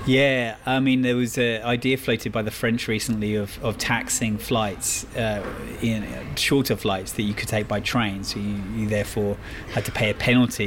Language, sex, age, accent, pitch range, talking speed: English, male, 30-49, British, 105-115 Hz, 195 wpm